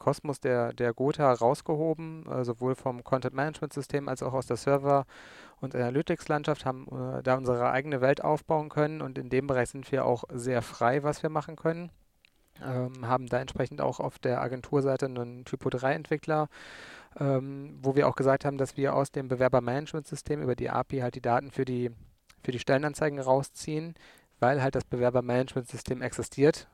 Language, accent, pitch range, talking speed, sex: German, German, 120-135 Hz, 160 wpm, male